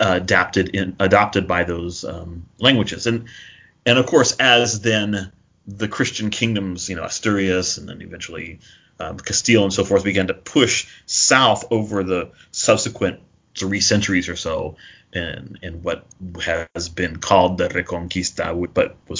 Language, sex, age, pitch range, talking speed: English, male, 30-49, 90-110 Hz, 155 wpm